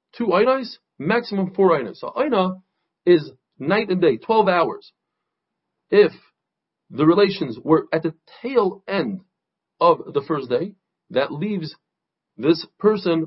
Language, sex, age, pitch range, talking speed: English, male, 40-59, 160-200 Hz, 130 wpm